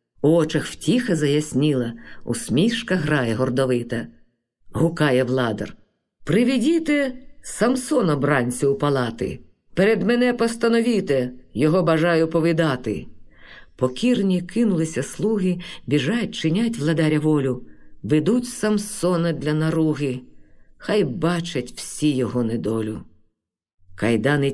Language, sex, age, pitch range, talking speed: Ukrainian, female, 50-69, 125-190 Hz, 90 wpm